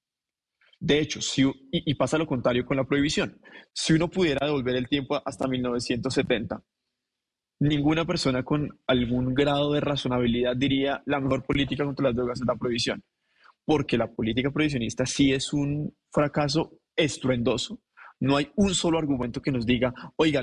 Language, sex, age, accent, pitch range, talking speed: Spanish, male, 20-39, Colombian, 125-145 Hz, 155 wpm